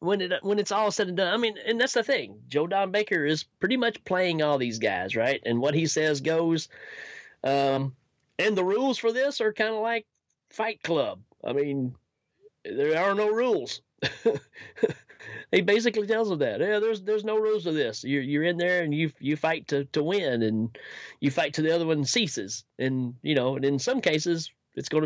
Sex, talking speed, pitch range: male, 210 wpm, 135-210 Hz